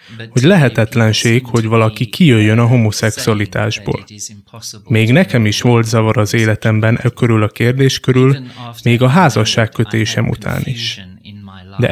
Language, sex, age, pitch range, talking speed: Hungarian, male, 20-39, 110-130 Hz, 130 wpm